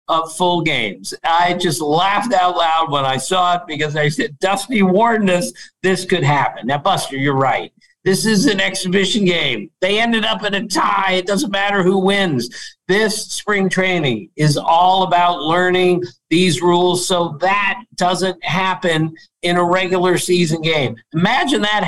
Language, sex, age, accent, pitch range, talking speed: English, male, 50-69, American, 160-195 Hz, 165 wpm